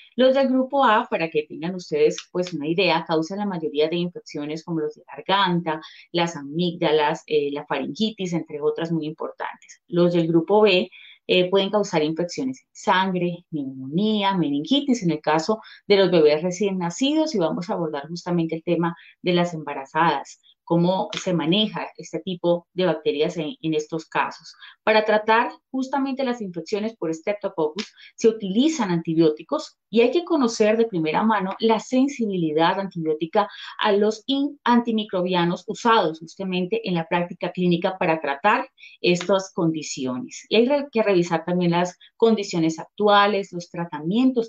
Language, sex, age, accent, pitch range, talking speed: Spanish, female, 30-49, Colombian, 160-215 Hz, 155 wpm